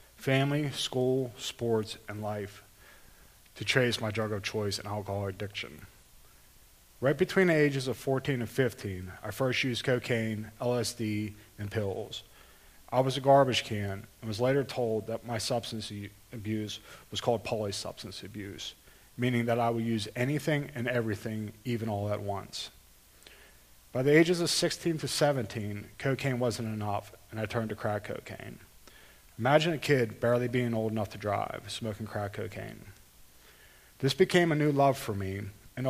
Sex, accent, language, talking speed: male, American, English, 155 wpm